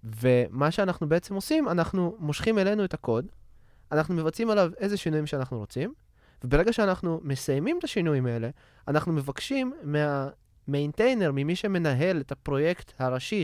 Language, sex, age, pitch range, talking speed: Hebrew, male, 20-39, 120-170 Hz, 135 wpm